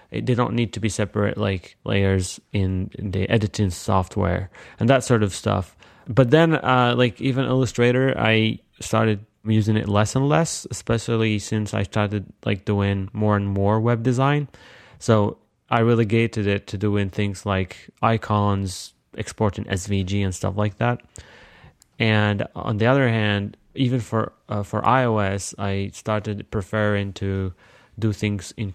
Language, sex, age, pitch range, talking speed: English, male, 20-39, 100-115 Hz, 155 wpm